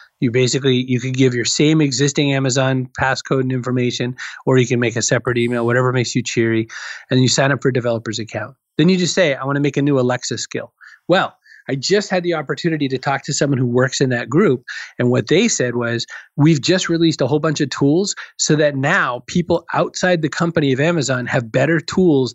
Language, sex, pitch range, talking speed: English, male, 125-155 Hz, 225 wpm